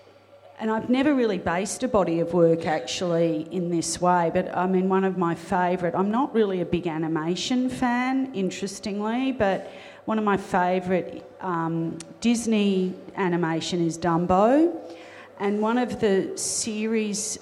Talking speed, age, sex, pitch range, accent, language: 145 wpm, 40-59, female, 165-205 Hz, Australian, English